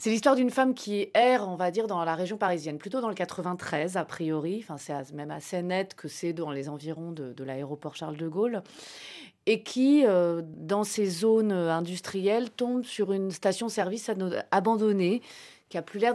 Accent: French